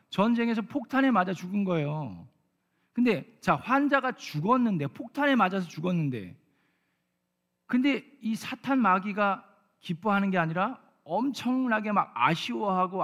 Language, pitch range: Korean, 160-220 Hz